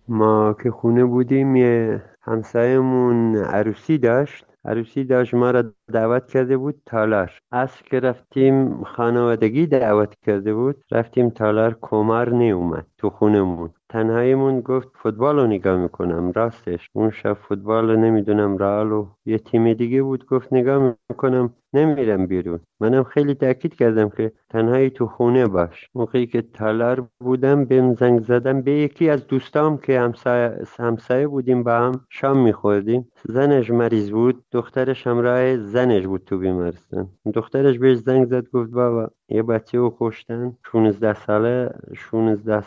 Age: 50-69